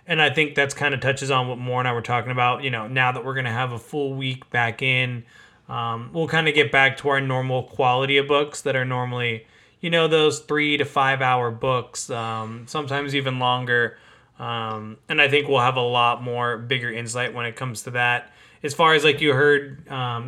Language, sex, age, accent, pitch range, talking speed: English, male, 20-39, American, 120-140 Hz, 230 wpm